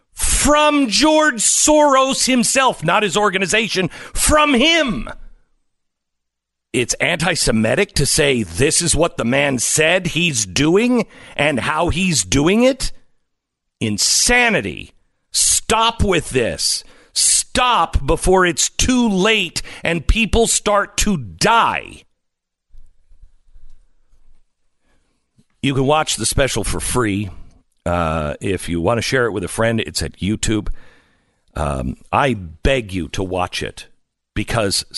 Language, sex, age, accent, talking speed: English, male, 50-69, American, 115 wpm